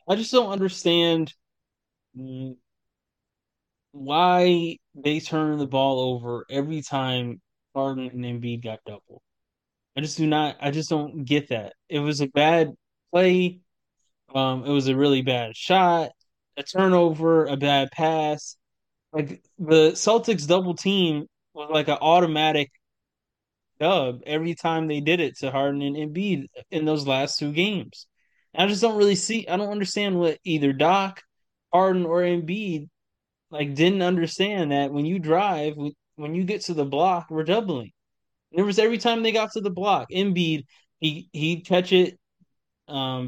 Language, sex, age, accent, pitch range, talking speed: English, male, 20-39, American, 140-180 Hz, 155 wpm